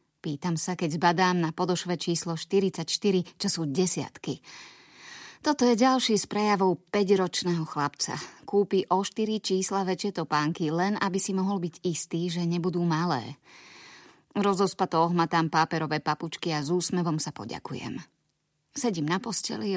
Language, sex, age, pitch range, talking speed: Slovak, female, 20-39, 160-190 Hz, 135 wpm